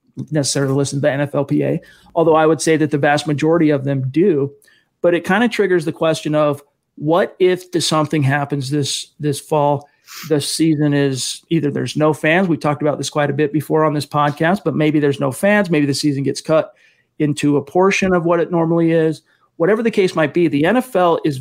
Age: 40-59